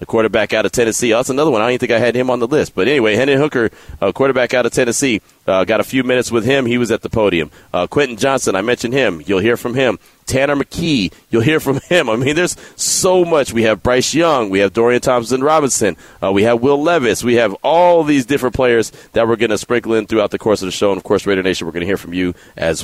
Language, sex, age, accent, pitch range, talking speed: English, male, 30-49, American, 105-130 Hz, 275 wpm